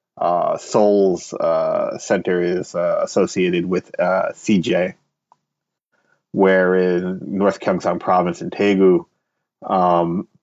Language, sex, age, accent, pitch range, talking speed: English, male, 30-49, American, 90-95 Hz, 105 wpm